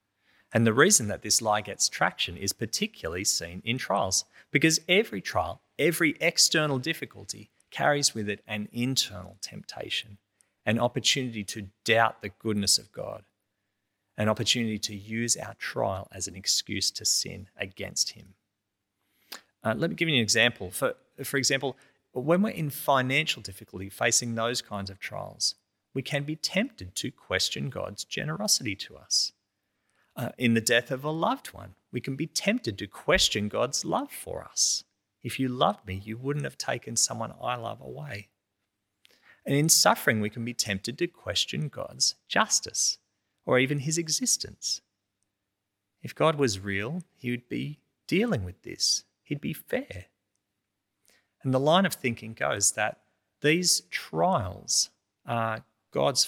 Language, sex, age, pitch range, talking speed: English, male, 30-49, 100-140 Hz, 155 wpm